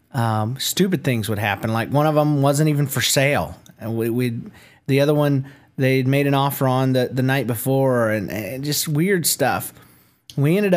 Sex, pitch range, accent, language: male, 110-135 Hz, American, English